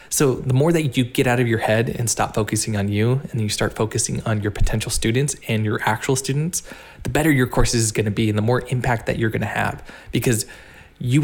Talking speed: 245 wpm